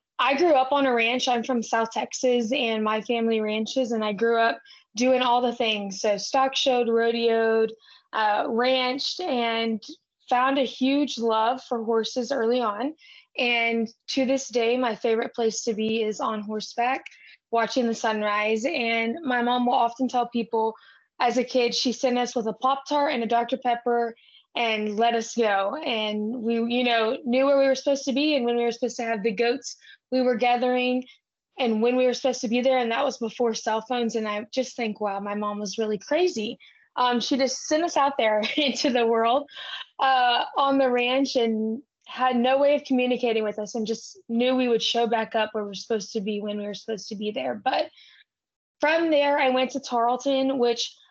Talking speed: 205 wpm